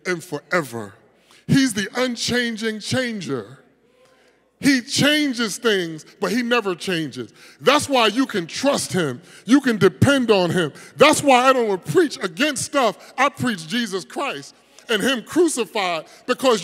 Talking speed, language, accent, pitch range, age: 150 wpm, English, American, 190-270 Hz, 30-49